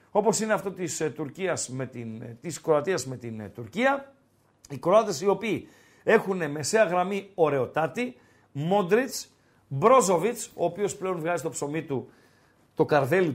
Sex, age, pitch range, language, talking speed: male, 50-69, 150-200 Hz, Greek, 140 wpm